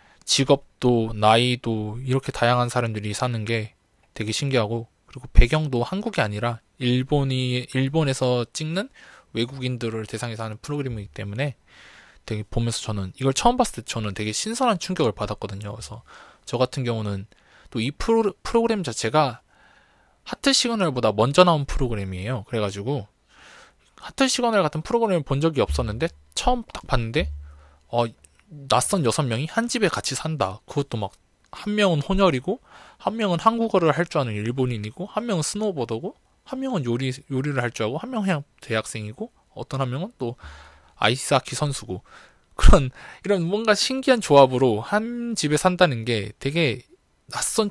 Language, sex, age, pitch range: Korean, male, 20-39, 110-170 Hz